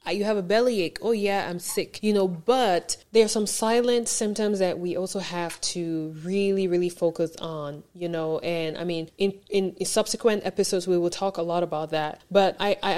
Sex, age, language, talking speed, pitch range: female, 20-39, English, 205 wpm, 170-195 Hz